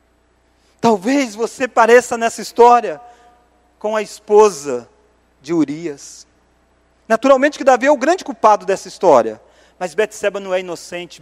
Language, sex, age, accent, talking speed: Portuguese, male, 40-59, Brazilian, 130 wpm